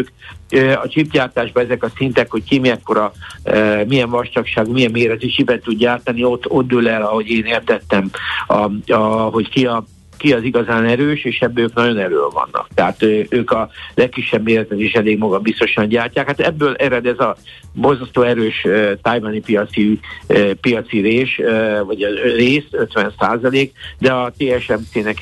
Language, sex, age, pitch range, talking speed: Hungarian, male, 60-79, 110-130 Hz, 160 wpm